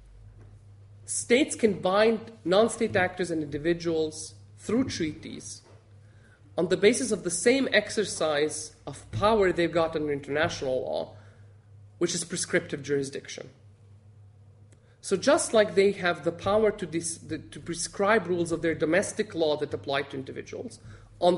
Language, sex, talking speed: English, male, 130 wpm